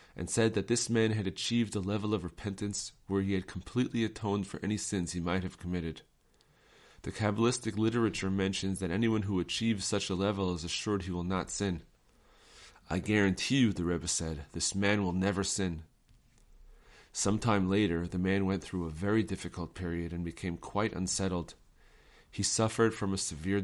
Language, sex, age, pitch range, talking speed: English, male, 30-49, 85-105 Hz, 180 wpm